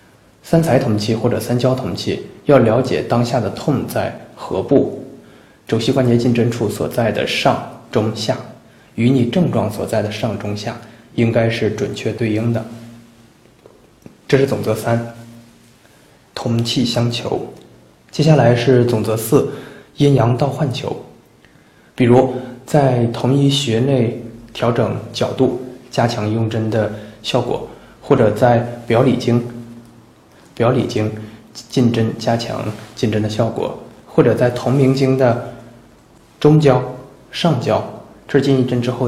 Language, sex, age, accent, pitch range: Chinese, male, 20-39, native, 110-130 Hz